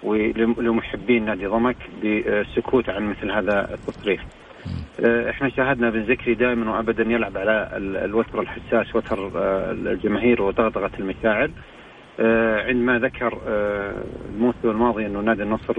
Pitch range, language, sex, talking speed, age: 105-120 Hz, Arabic, male, 110 wpm, 40-59